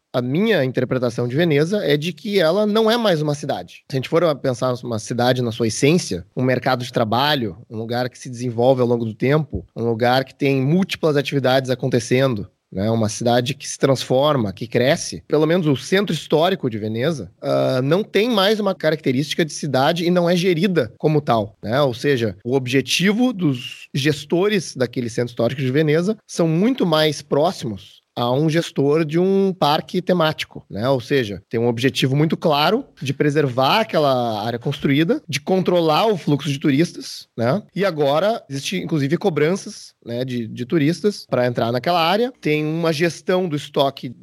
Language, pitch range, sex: Portuguese, 125-180 Hz, male